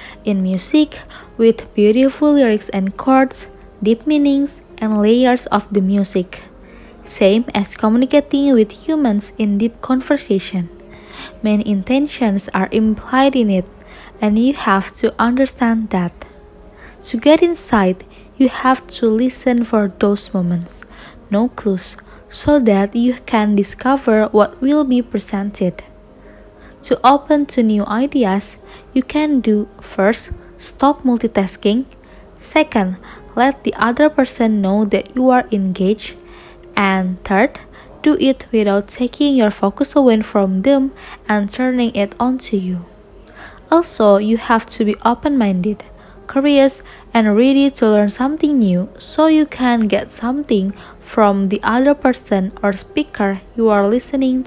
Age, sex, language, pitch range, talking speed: 20-39, female, English, 200-260 Hz, 130 wpm